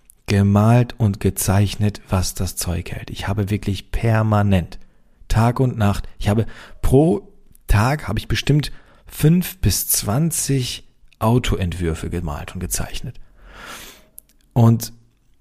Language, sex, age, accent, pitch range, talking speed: German, male, 40-59, German, 95-120 Hz, 115 wpm